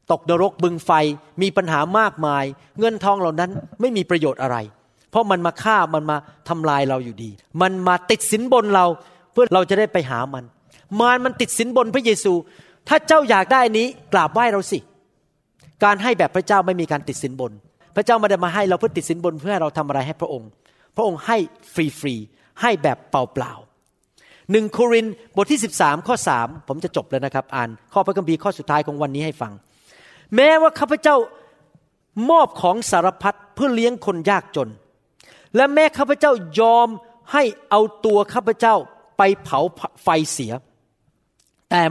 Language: Thai